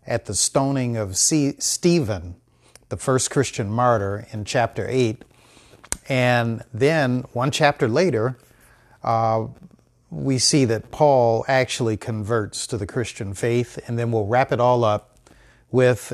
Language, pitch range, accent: English, 110-135 Hz, American